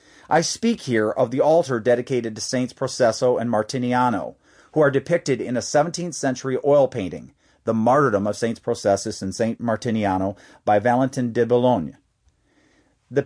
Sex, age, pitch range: male, 40-59, 115-150 Hz